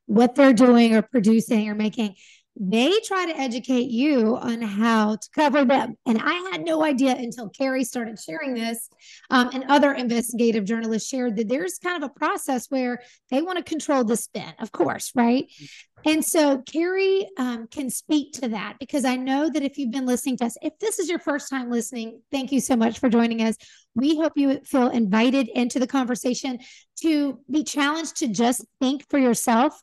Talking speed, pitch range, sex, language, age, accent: 195 wpm, 230-295 Hz, female, English, 30-49, American